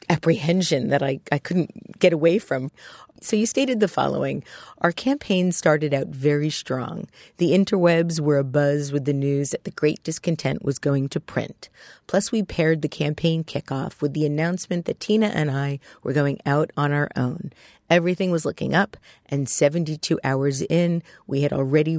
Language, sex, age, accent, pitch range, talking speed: English, female, 40-59, American, 140-170 Hz, 175 wpm